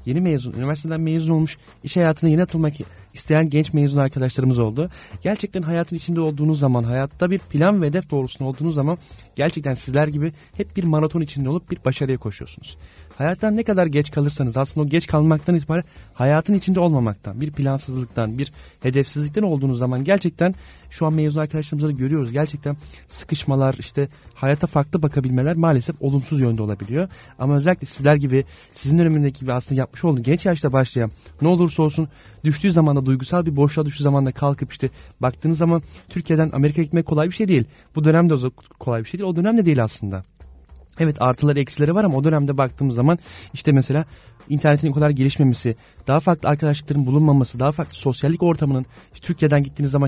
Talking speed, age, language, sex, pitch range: 170 wpm, 30-49, Turkish, male, 135-165 Hz